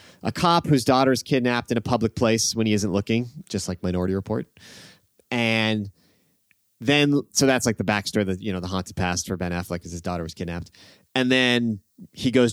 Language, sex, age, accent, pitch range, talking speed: English, male, 30-49, American, 100-130 Hz, 205 wpm